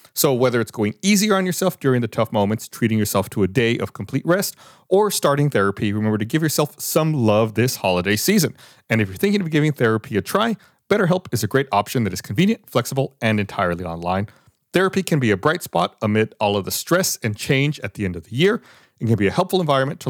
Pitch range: 105-160 Hz